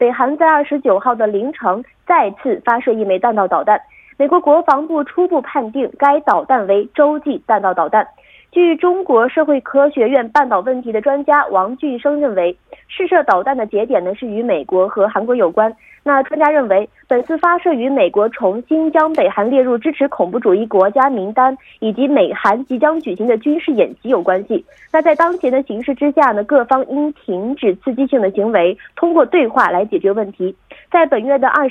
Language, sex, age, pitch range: Korean, female, 20-39, 220-300 Hz